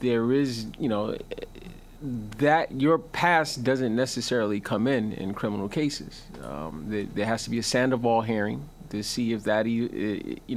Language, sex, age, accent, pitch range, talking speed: English, male, 30-49, American, 110-135 Hz, 160 wpm